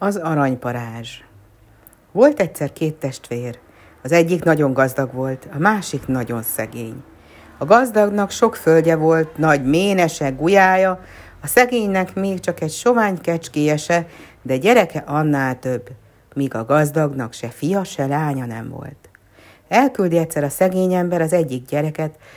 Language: Hungarian